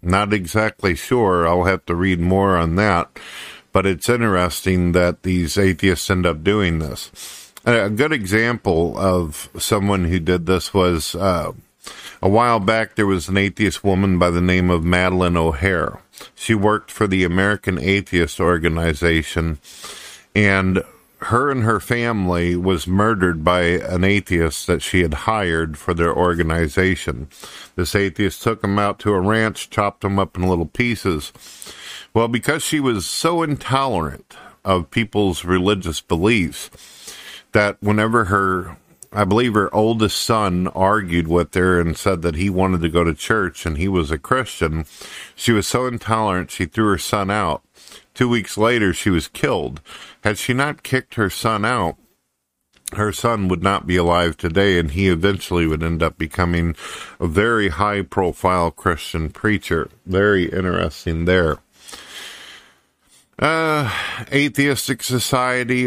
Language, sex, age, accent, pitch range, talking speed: English, male, 50-69, American, 85-105 Hz, 150 wpm